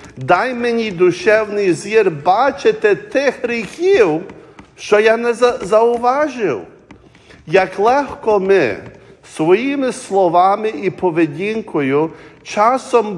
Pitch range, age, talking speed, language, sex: 175-230 Hz, 50-69, 85 wpm, English, male